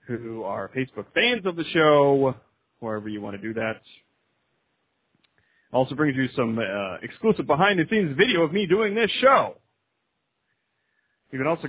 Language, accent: English, American